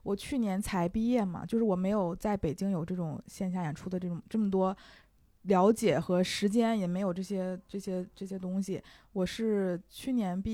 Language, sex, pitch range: Chinese, female, 175-205 Hz